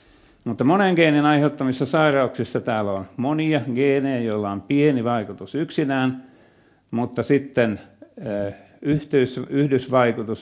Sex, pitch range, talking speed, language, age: male, 110-145 Hz, 110 wpm, Finnish, 50-69